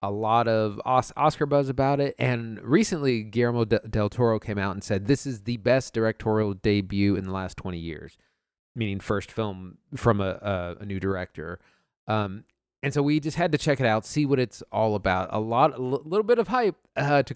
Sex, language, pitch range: male, English, 100-120 Hz